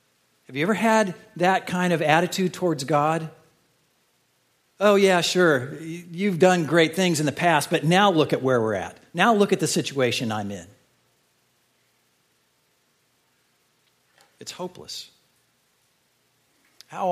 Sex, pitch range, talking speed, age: male, 110-160 Hz, 130 wpm, 50-69